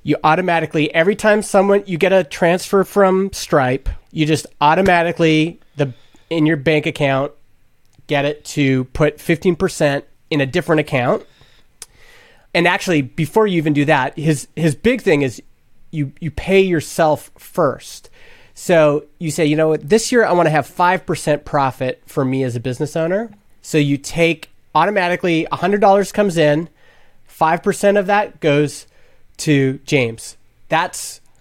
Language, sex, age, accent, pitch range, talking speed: English, male, 30-49, American, 135-175 Hz, 160 wpm